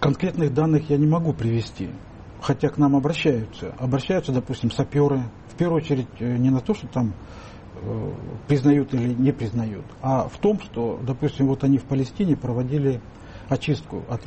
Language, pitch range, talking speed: Russian, 115-145 Hz, 155 wpm